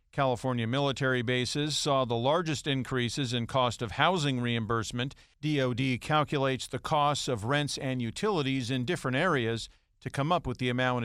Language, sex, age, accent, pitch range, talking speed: English, male, 50-69, American, 120-155 Hz, 155 wpm